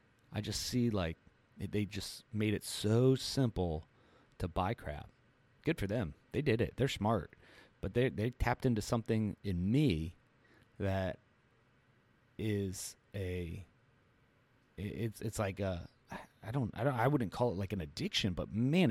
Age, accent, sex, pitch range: 30-49, American, male, 95-120 Hz